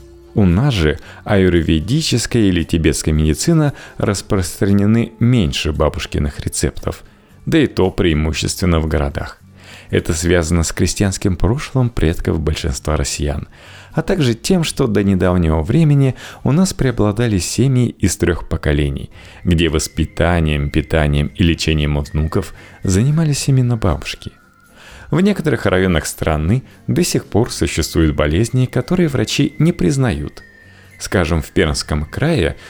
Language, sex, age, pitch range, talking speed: Russian, male, 30-49, 80-120 Hz, 120 wpm